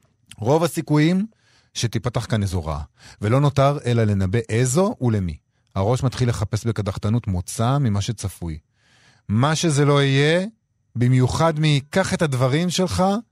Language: Hebrew